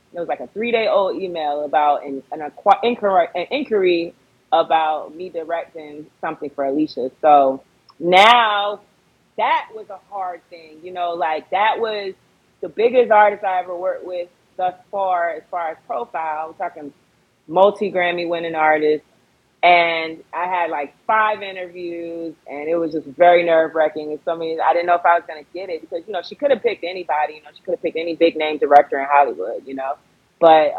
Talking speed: 185 wpm